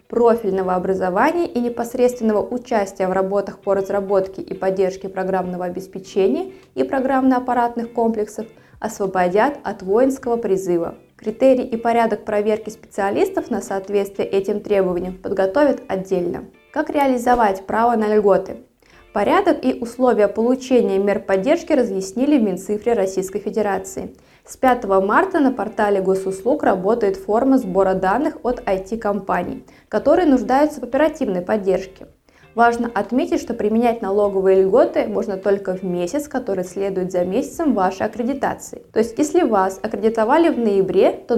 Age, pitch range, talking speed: 20-39, 195-250 Hz, 130 wpm